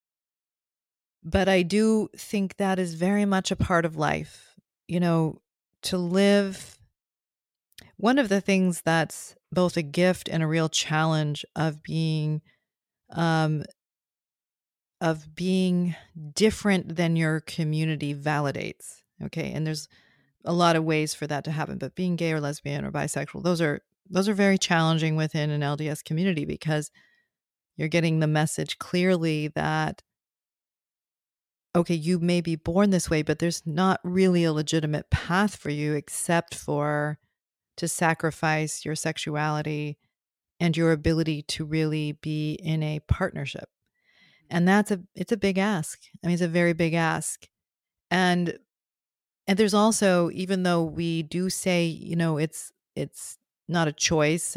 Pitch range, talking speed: 155-180 Hz, 145 wpm